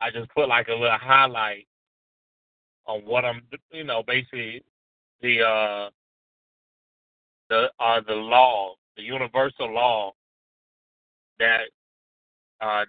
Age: 30-49